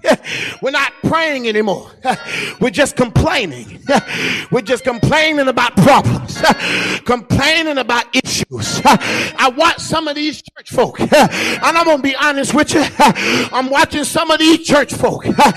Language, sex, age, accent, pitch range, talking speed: English, male, 40-59, American, 275-335 Hz, 140 wpm